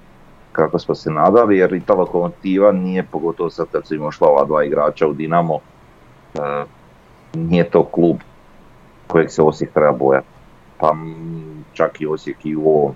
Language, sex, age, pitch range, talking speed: Croatian, male, 40-59, 75-90 Hz, 155 wpm